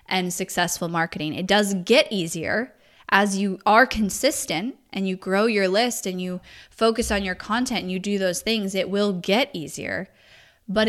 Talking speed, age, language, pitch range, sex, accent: 175 wpm, 10-29, English, 175-205 Hz, female, American